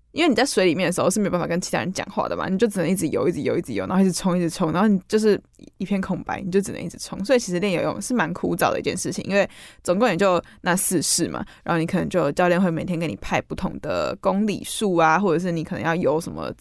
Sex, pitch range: female, 175-220 Hz